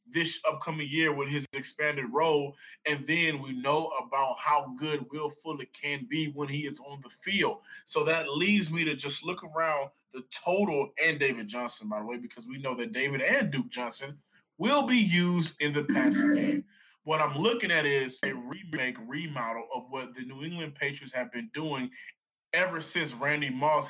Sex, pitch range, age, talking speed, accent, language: male, 135-165 Hz, 20-39, 190 wpm, American, English